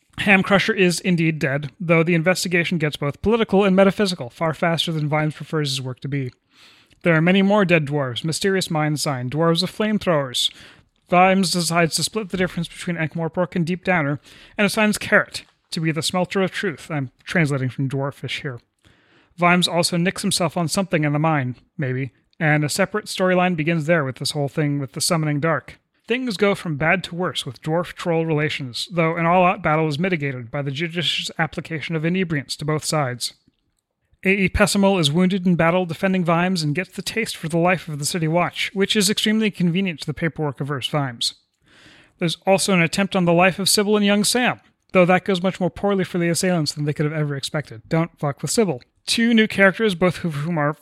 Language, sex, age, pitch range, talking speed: English, male, 30-49, 150-185 Hz, 205 wpm